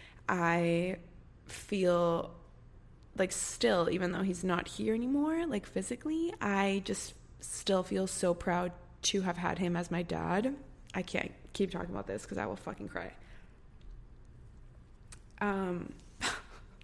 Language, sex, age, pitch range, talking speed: English, female, 20-39, 185-260 Hz, 130 wpm